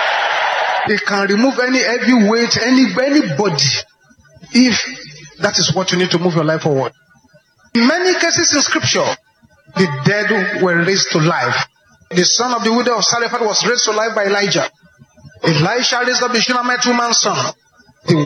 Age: 40-59